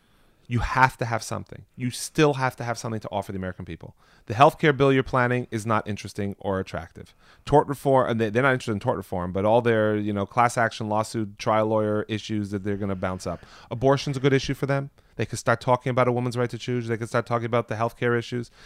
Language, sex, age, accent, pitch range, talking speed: English, male, 30-49, American, 105-130 Hz, 250 wpm